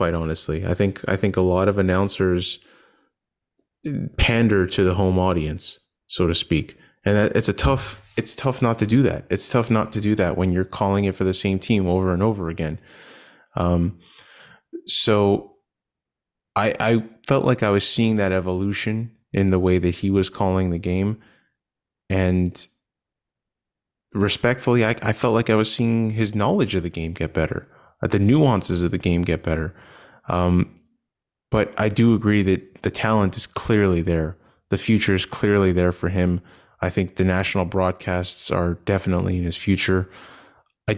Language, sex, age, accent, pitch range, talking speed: English, male, 20-39, American, 90-110 Hz, 175 wpm